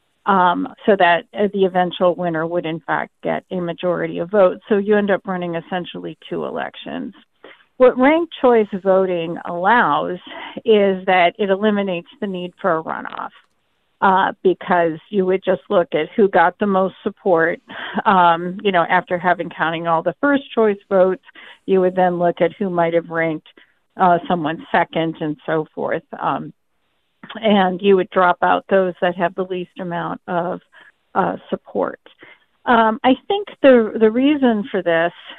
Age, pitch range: 50-69, 175-210 Hz